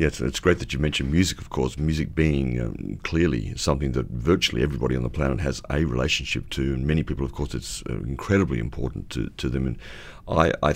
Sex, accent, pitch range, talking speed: male, Australian, 65-80 Hz, 210 wpm